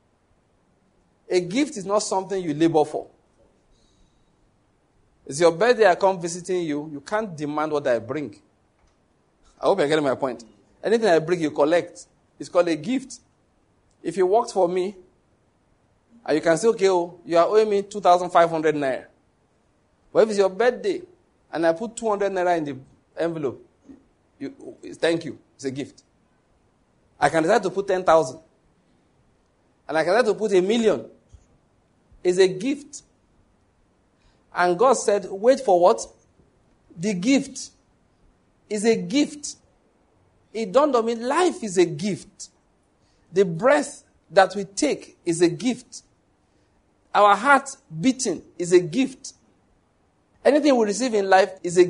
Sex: male